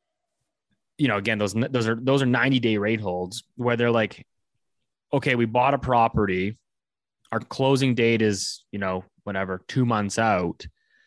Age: 20-39